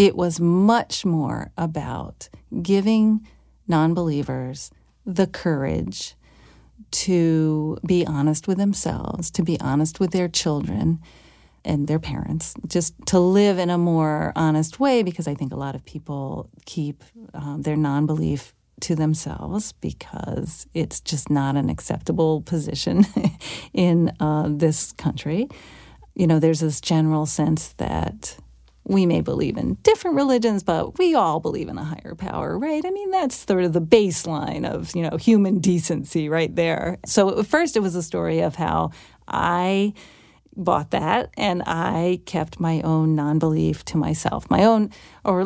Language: English